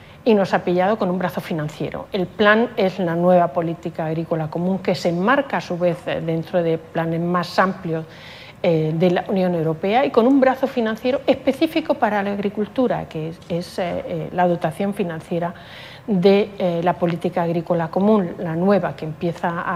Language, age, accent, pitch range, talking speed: Spanish, 40-59, Spanish, 170-200 Hz, 175 wpm